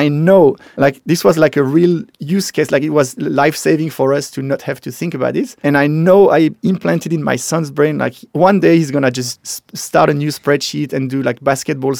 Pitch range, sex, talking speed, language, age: 135-160 Hz, male, 240 wpm, English, 30-49